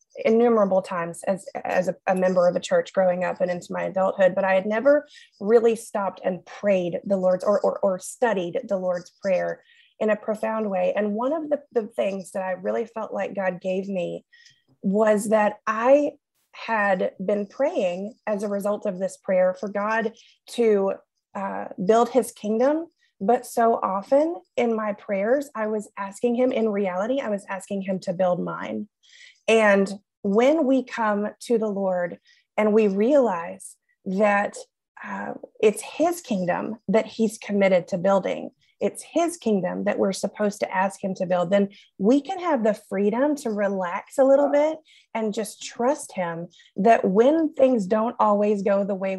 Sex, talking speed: female, 175 wpm